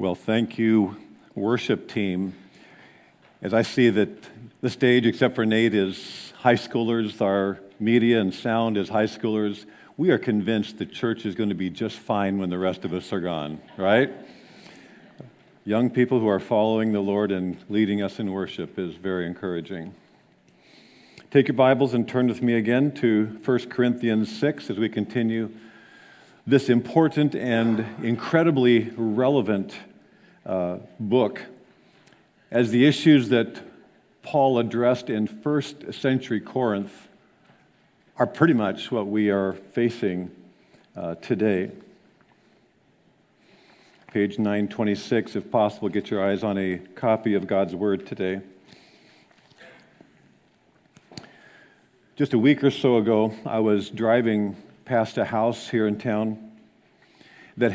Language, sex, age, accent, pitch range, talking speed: English, male, 50-69, American, 100-120 Hz, 135 wpm